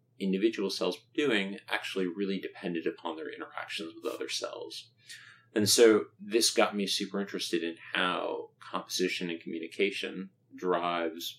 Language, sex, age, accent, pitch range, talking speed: English, male, 30-49, American, 85-105 Hz, 135 wpm